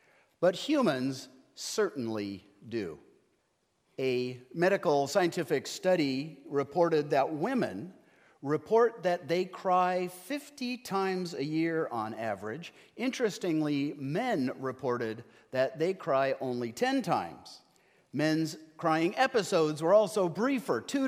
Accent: American